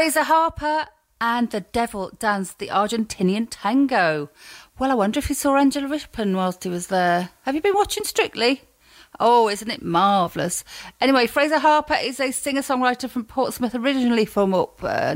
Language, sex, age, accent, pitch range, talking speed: English, female, 40-59, British, 180-250 Hz, 170 wpm